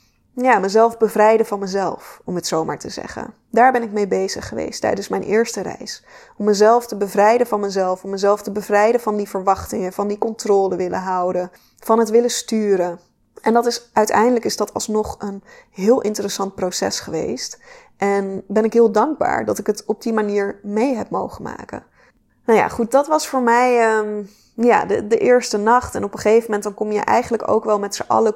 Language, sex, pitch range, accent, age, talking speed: Dutch, female, 200-235 Hz, Dutch, 20-39, 205 wpm